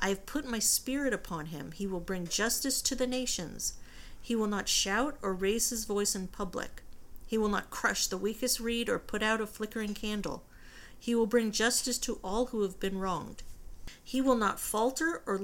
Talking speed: 200 wpm